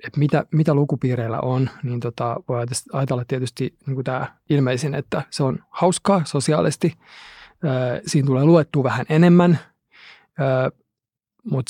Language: Finnish